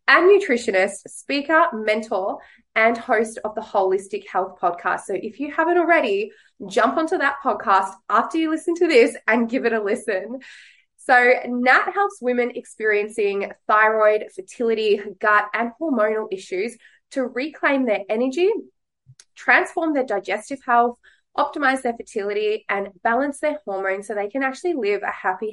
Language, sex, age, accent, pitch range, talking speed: English, female, 20-39, Australian, 205-300 Hz, 150 wpm